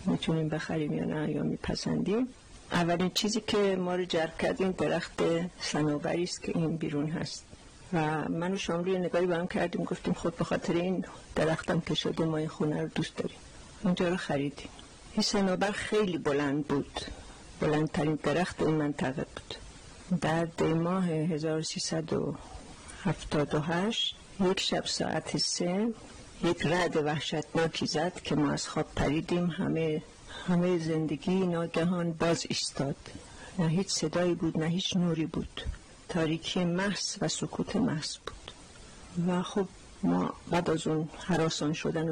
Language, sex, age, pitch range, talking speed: Persian, female, 50-69, 160-185 Hz, 140 wpm